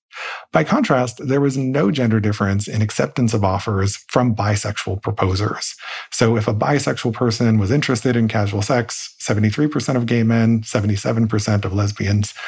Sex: male